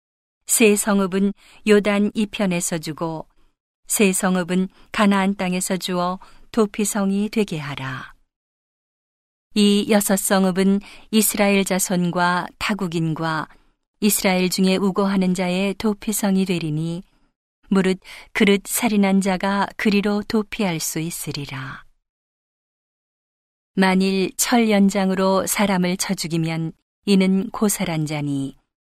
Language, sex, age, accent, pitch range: Korean, female, 40-59, native, 180-205 Hz